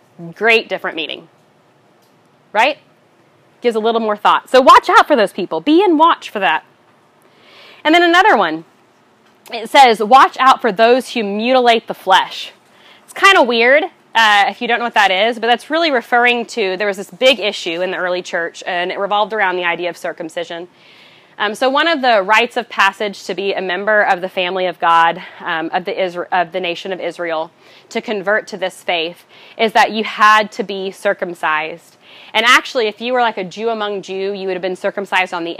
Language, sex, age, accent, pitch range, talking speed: English, female, 20-39, American, 180-230 Hz, 205 wpm